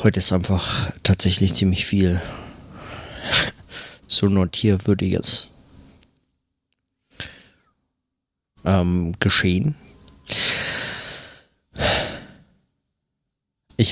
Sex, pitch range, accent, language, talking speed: male, 90-100 Hz, German, German, 45 wpm